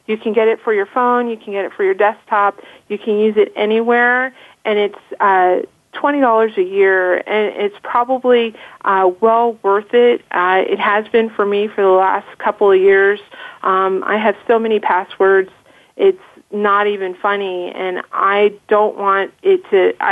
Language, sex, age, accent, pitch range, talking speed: English, female, 40-59, American, 200-250 Hz, 180 wpm